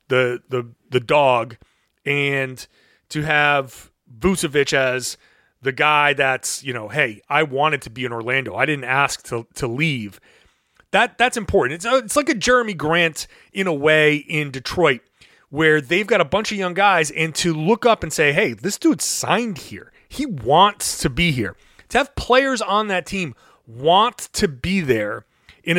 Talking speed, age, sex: 180 wpm, 30-49, male